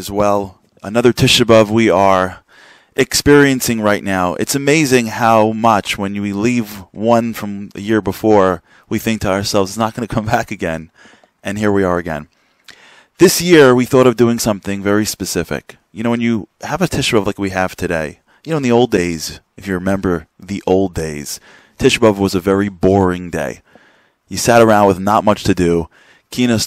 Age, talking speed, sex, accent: 30-49, 190 wpm, male, American